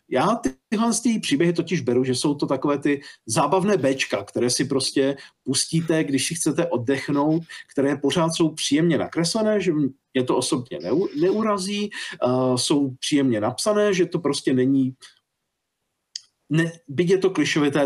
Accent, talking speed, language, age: native, 150 wpm, Czech, 40-59